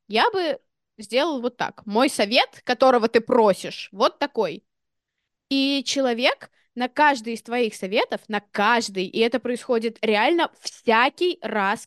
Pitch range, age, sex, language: 220-295 Hz, 20-39, female, Russian